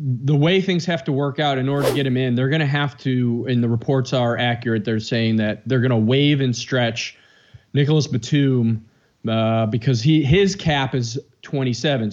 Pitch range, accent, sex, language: 120-150 Hz, American, male, English